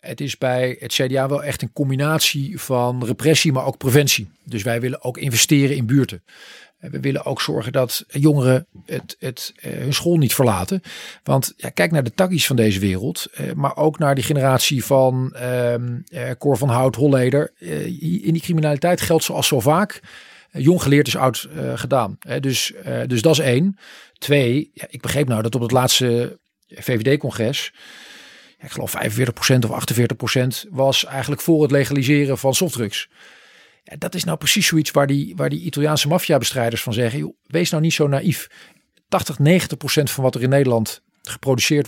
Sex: male